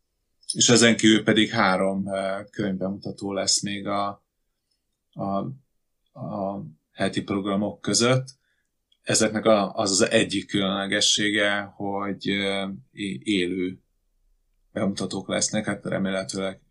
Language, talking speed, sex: Hungarian, 90 wpm, male